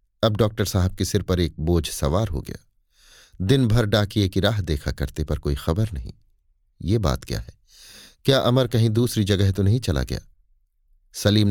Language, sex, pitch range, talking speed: Hindi, male, 85-115 Hz, 190 wpm